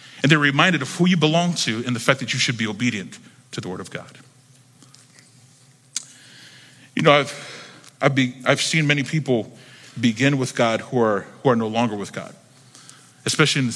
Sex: male